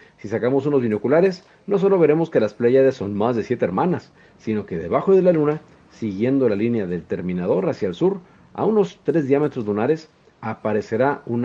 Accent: Mexican